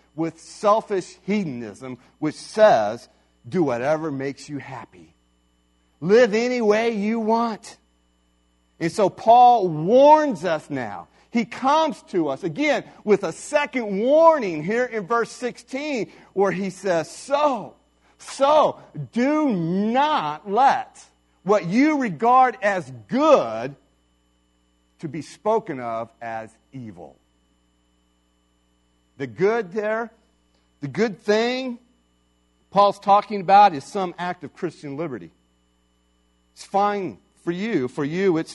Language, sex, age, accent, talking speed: English, male, 50-69, American, 115 wpm